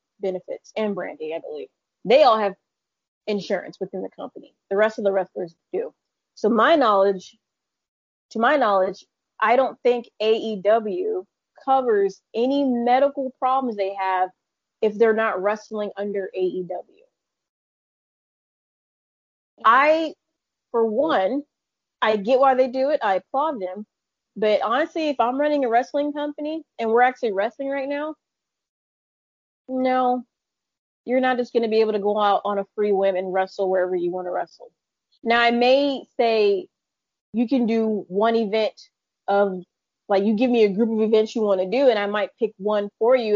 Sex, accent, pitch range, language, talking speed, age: female, American, 200-260 Hz, English, 160 wpm, 20-39